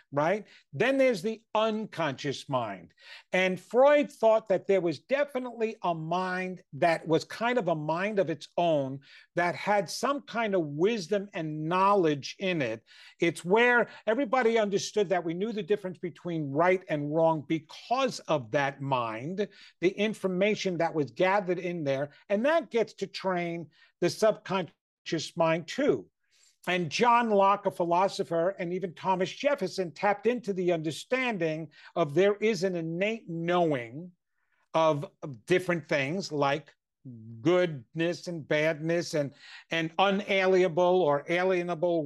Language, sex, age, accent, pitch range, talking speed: English, male, 50-69, American, 160-205 Hz, 140 wpm